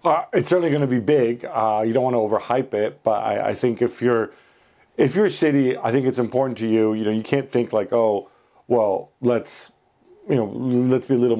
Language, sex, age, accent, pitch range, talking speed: English, male, 40-59, American, 105-125 Hz, 235 wpm